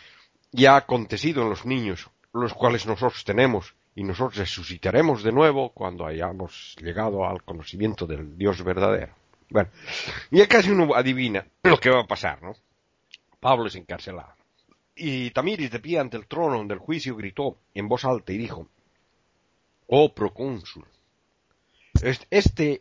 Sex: male